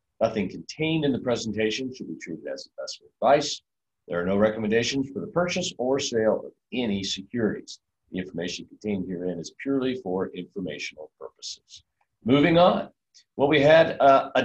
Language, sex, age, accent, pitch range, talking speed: English, male, 50-69, American, 95-135 Hz, 160 wpm